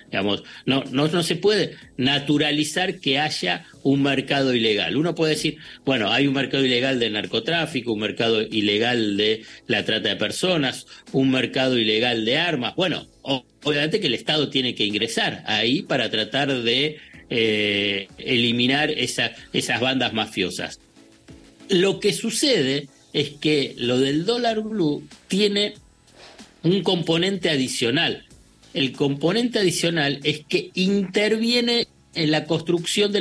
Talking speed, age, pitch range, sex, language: 135 wpm, 50-69, 125-170 Hz, male, Spanish